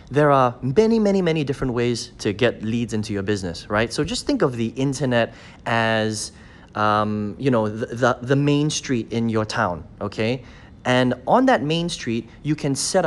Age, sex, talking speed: 30-49, male, 190 wpm